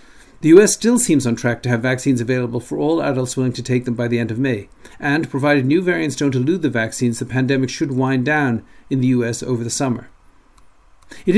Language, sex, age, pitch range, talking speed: English, male, 50-69, 120-150 Hz, 220 wpm